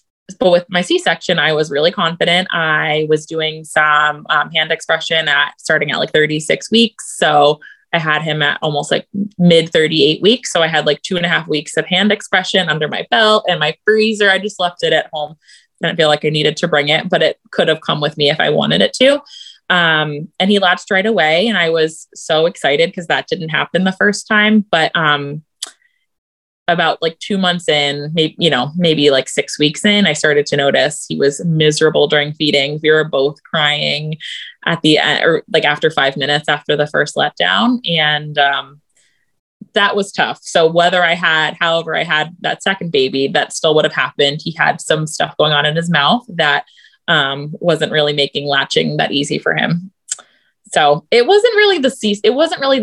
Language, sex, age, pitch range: English, female, 20-39, 150-190 Hz